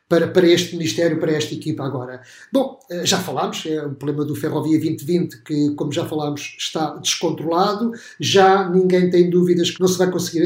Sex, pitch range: male, 170-200 Hz